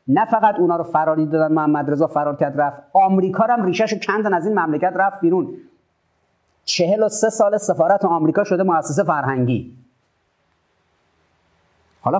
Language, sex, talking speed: Persian, male, 145 wpm